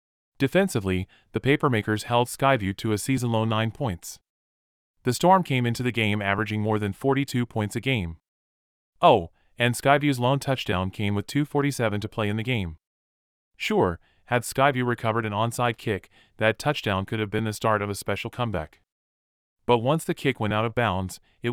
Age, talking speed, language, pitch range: 30-49, 175 wpm, English, 95-125 Hz